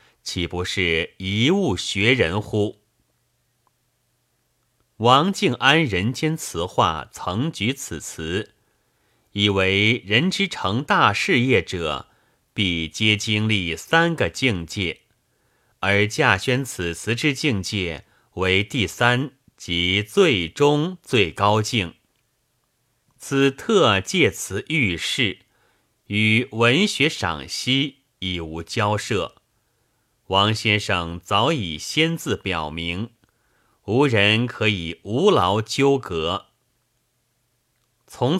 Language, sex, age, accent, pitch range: Chinese, male, 30-49, native, 95-130 Hz